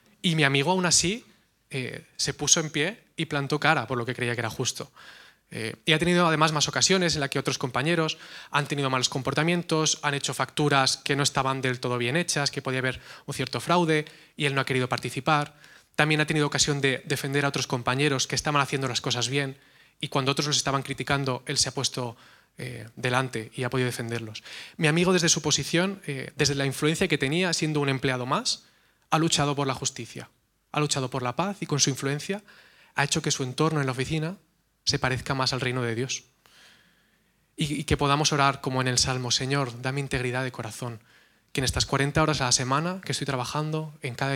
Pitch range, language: 130-150 Hz, Spanish